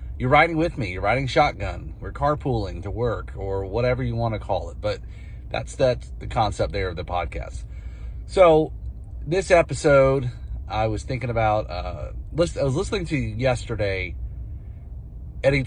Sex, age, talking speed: male, 30-49, 155 wpm